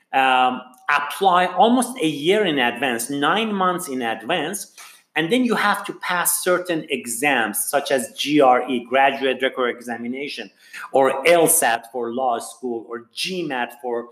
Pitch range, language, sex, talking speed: 135-195 Hz, English, male, 140 wpm